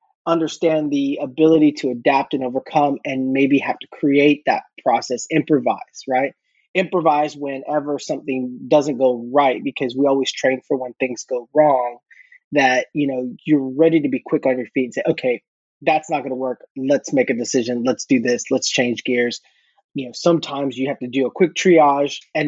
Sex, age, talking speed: male, 20-39, 190 wpm